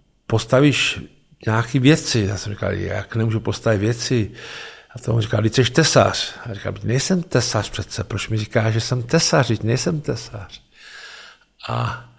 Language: Czech